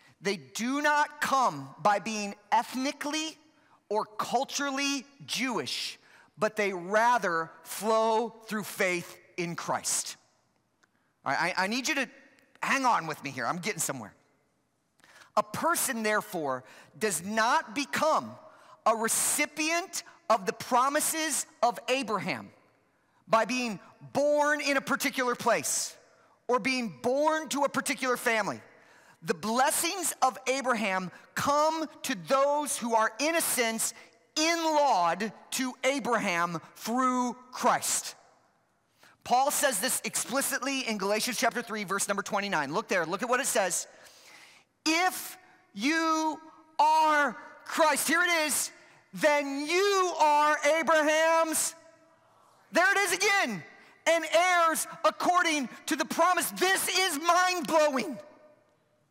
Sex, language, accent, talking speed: male, English, American, 120 wpm